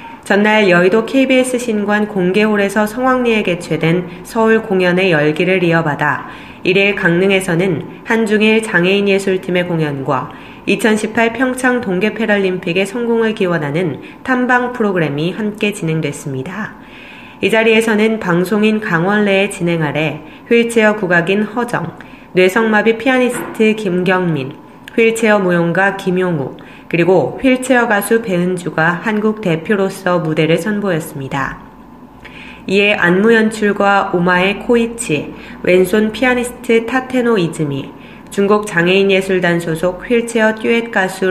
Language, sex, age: Korean, female, 20-39